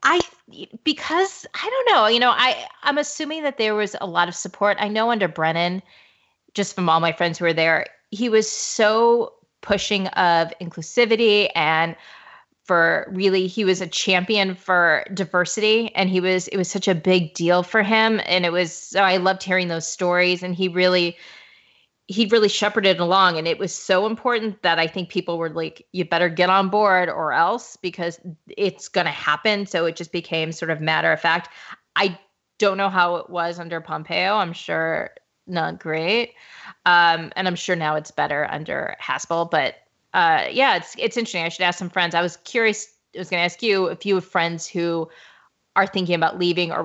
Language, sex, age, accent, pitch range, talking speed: English, female, 30-49, American, 170-210 Hz, 195 wpm